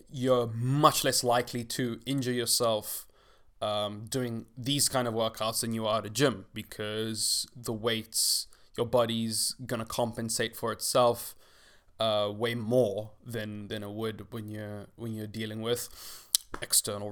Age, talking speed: 20-39, 145 wpm